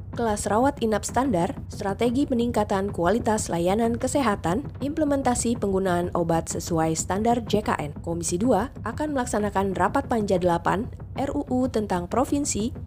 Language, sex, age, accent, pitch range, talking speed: Indonesian, female, 20-39, native, 190-255 Hz, 115 wpm